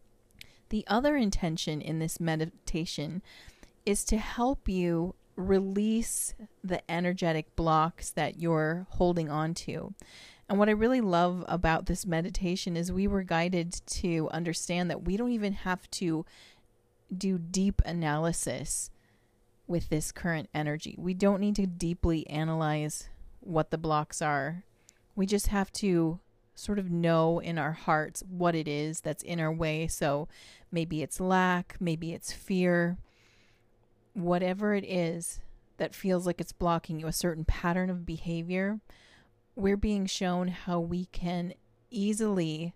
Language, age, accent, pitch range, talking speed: English, 30-49, American, 160-190 Hz, 140 wpm